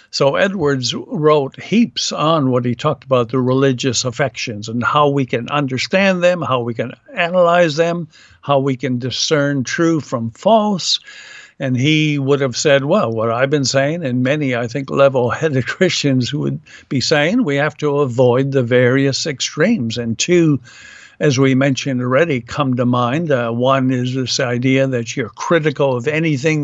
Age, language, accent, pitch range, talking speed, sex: 60-79, English, American, 130-160 Hz, 170 wpm, male